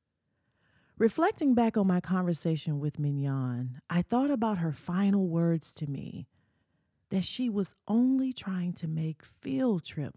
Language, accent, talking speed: English, American, 140 wpm